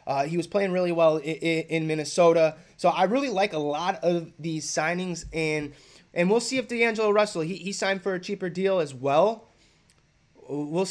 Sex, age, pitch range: male, 20-39, 155-190 Hz